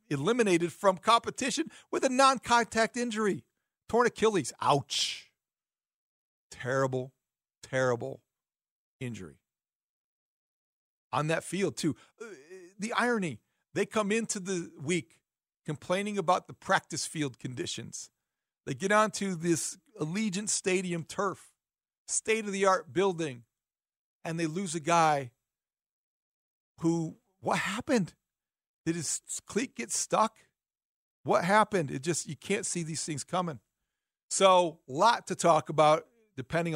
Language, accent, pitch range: English, American, 155-210 Hz